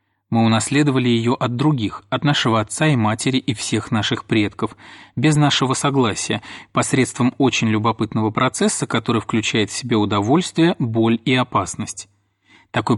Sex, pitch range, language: male, 105-135 Hz, Russian